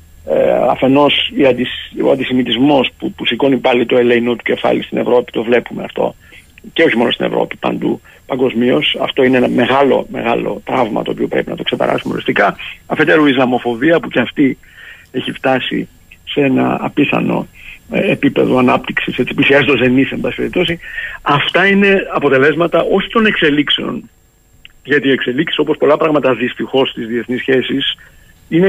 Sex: male